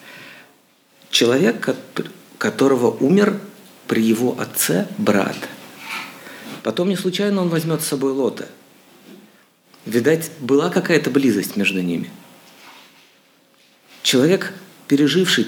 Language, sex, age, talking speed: Russian, male, 50-69, 90 wpm